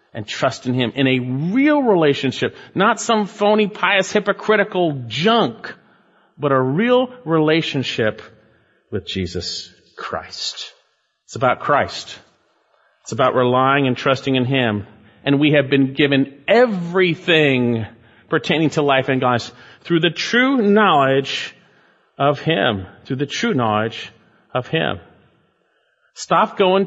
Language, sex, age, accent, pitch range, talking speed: English, male, 40-59, American, 130-210 Hz, 125 wpm